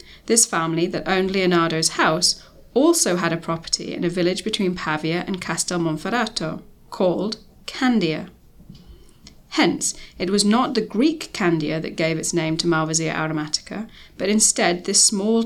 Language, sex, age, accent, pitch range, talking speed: English, female, 20-39, British, 170-220 Hz, 150 wpm